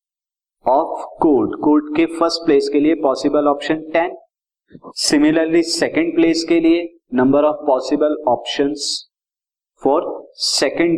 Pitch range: 115-160 Hz